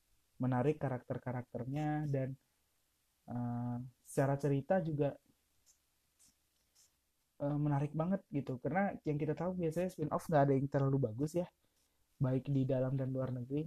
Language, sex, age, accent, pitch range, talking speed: Indonesian, male, 20-39, native, 105-150 Hz, 130 wpm